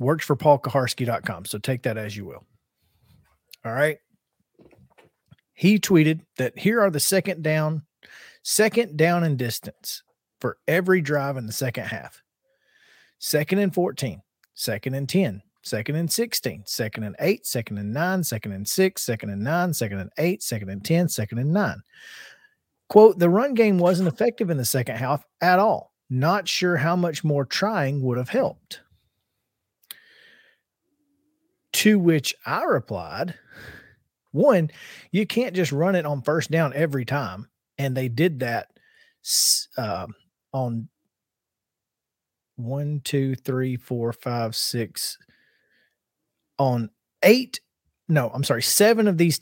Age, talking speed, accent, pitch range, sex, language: 40-59, 140 wpm, American, 125-180 Hz, male, English